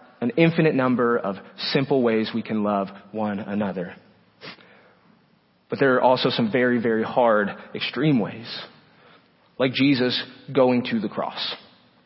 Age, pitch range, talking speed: 30-49, 125-180 Hz, 135 wpm